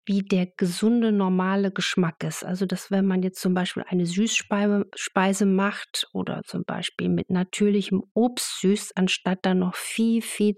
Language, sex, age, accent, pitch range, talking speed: German, female, 50-69, German, 185-220 Hz, 160 wpm